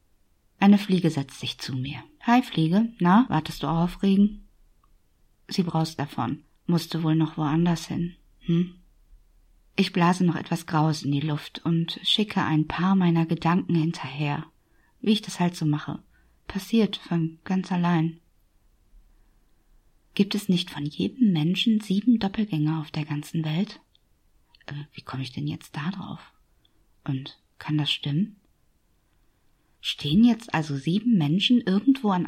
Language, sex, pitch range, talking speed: German, female, 145-190 Hz, 145 wpm